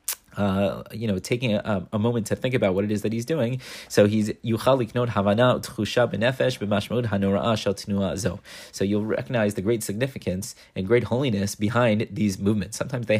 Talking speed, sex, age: 145 wpm, male, 30-49